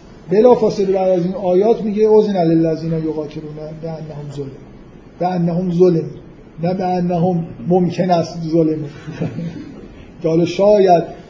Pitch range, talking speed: 160-185 Hz, 120 wpm